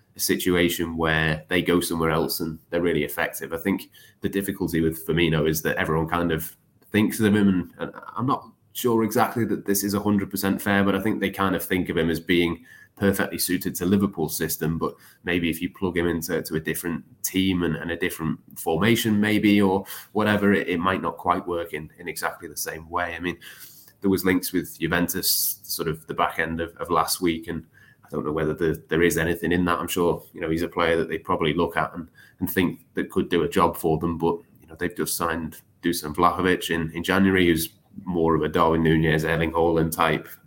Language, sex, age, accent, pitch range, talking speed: English, male, 20-39, British, 80-95 Hz, 220 wpm